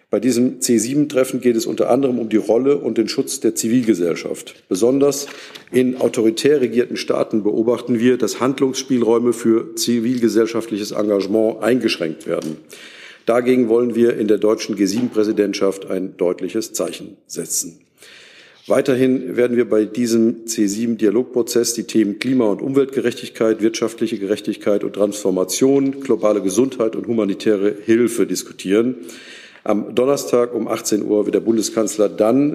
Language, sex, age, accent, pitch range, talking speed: German, male, 50-69, German, 105-120 Hz, 130 wpm